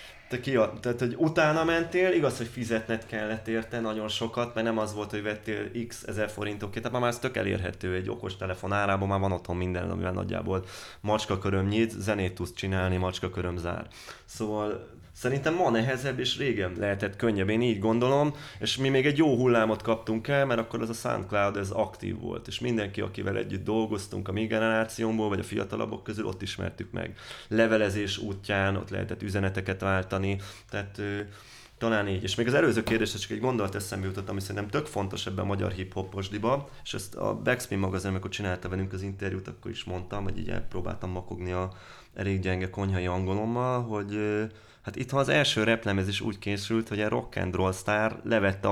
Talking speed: 190 wpm